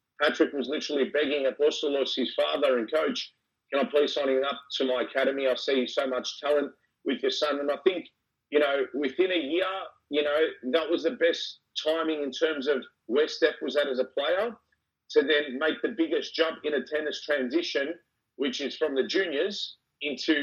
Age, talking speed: 30-49, 200 wpm